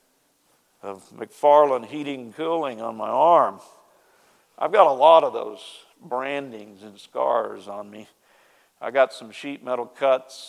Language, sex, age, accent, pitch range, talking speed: English, male, 50-69, American, 120-155 Hz, 145 wpm